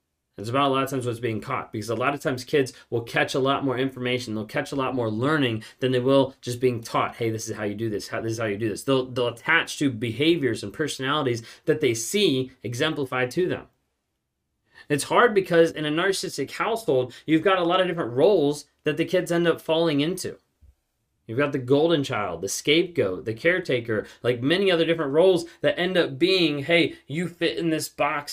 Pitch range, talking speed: 110-150 Hz, 220 wpm